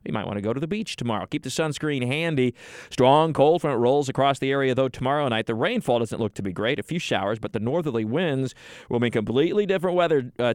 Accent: American